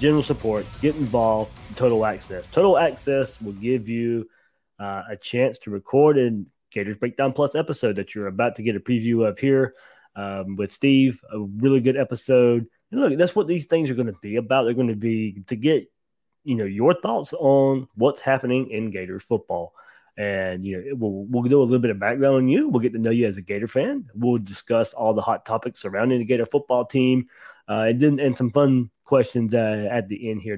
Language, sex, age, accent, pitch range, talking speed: English, male, 20-39, American, 105-130 Hz, 215 wpm